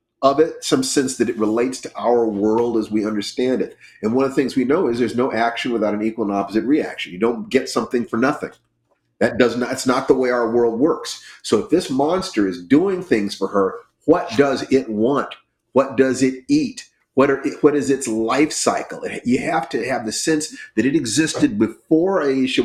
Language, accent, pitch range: English, American, 110-150 Hz